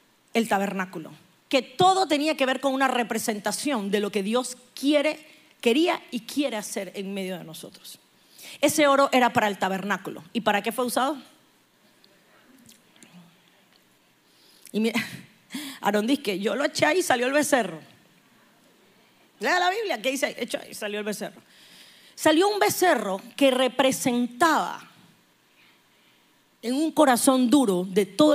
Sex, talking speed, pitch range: female, 140 wpm, 205-280 Hz